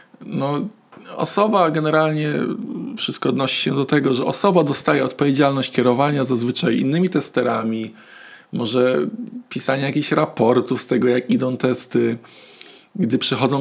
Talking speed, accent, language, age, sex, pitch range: 120 wpm, native, Polish, 20-39, male, 125-150 Hz